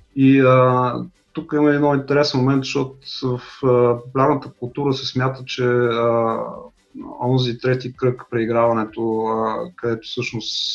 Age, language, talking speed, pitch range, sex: 30-49, Bulgarian, 125 wpm, 115-140 Hz, male